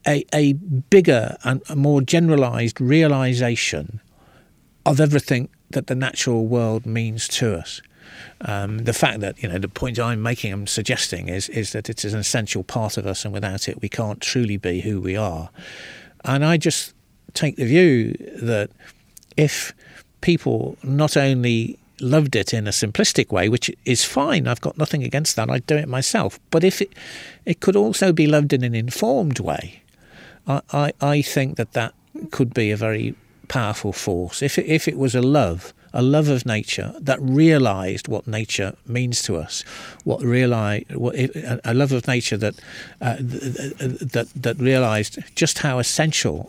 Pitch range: 110-145 Hz